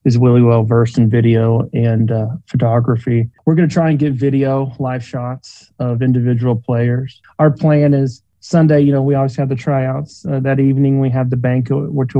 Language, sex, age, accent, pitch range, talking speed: English, male, 30-49, American, 115-135 Hz, 195 wpm